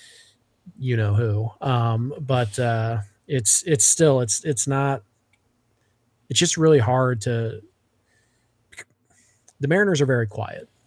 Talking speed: 120 wpm